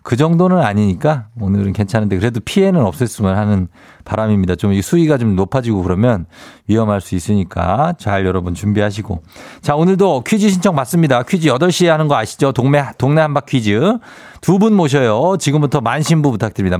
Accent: native